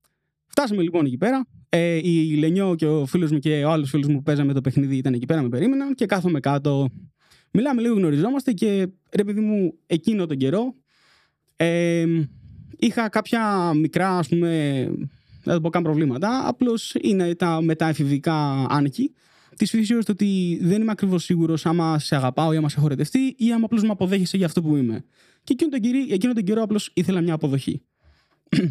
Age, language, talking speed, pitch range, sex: 20-39, Greek, 175 wpm, 145-205 Hz, male